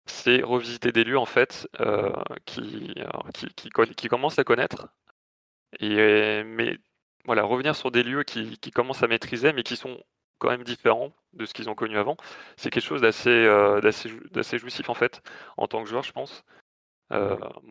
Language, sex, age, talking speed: French, male, 20-39, 185 wpm